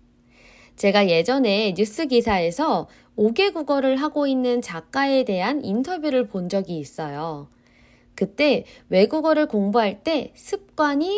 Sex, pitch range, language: female, 190-290 Hz, Korean